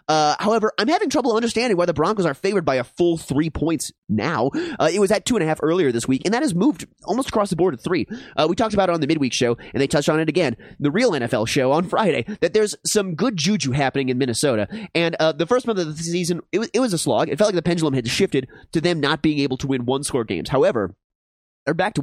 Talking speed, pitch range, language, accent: 275 wpm, 140-195 Hz, English, American